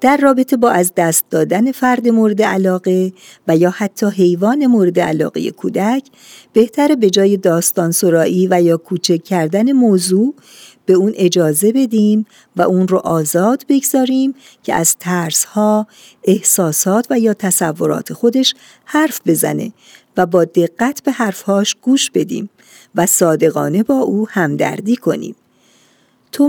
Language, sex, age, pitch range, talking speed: Persian, female, 50-69, 170-235 Hz, 135 wpm